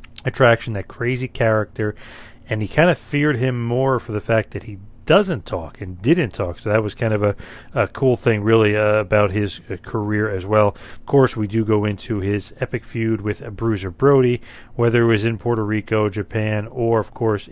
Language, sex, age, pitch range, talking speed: English, male, 40-59, 100-115 Hz, 210 wpm